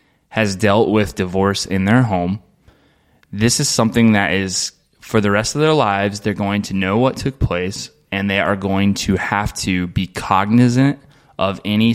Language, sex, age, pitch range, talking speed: English, male, 20-39, 95-115 Hz, 180 wpm